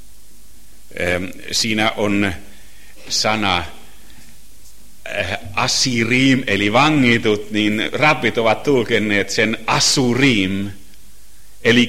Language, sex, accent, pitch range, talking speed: Finnish, male, native, 95-125 Hz, 70 wpm